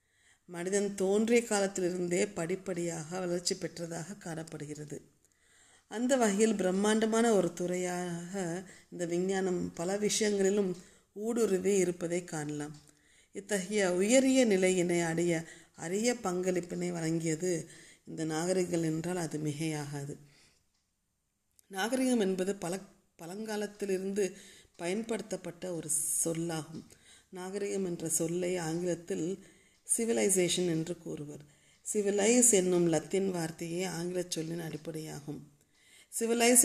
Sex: female